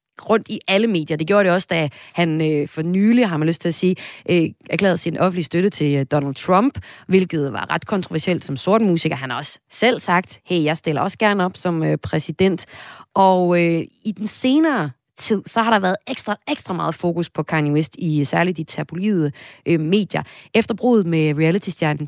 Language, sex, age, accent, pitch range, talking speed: Danish, female, 30-49, native, 155-195 Hz, 200 wpm